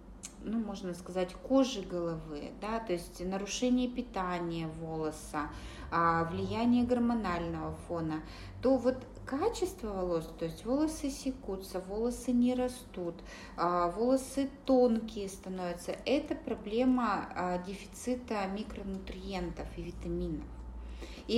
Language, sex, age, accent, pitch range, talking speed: Russian, female, 20-39, native, 170-235 Hz, 100 wpm